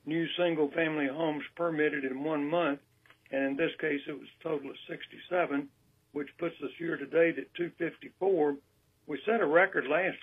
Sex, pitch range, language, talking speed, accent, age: male, 140-170 Hz, English, 175 wpm, American, 60-79